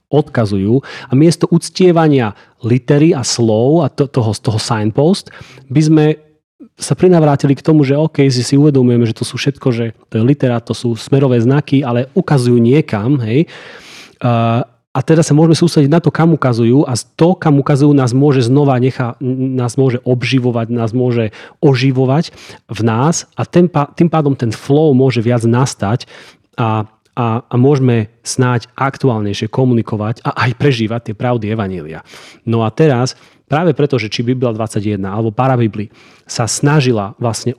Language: Slovak